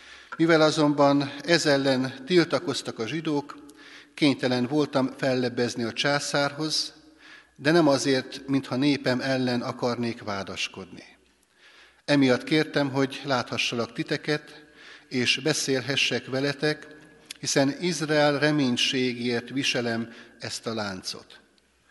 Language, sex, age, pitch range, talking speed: Hungarian, male, 60-79, 125-150 Hz, 95 wpm